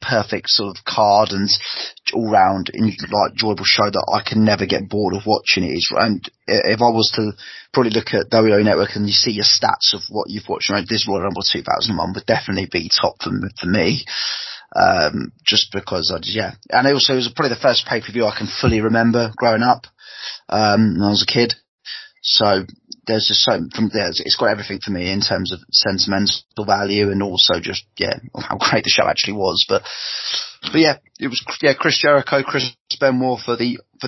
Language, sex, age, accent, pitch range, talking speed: English, male, 20-39, British, 105-120 Hz, 210 wpm